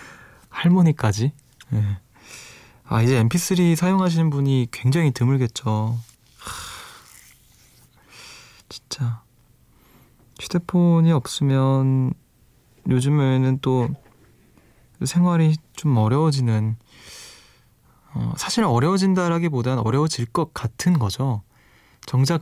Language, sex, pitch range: Korean, male, 115-145 Hz